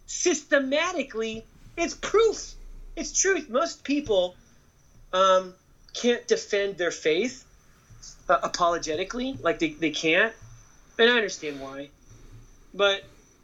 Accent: American